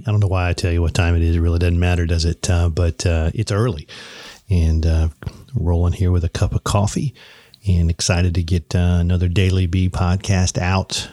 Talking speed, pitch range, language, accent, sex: 220 wpm, 85-100 Hz, English, American, male